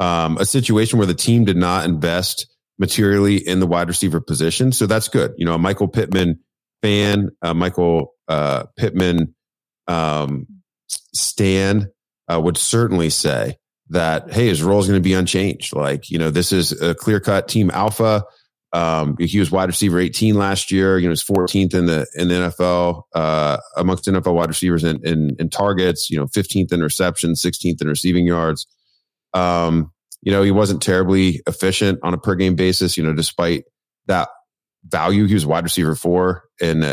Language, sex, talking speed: English, male, 185 wpm